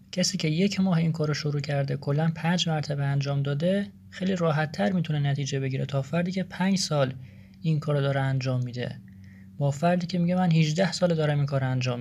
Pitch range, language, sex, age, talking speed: 135-180 Hz, Persian, male, 30-49, 200 wpm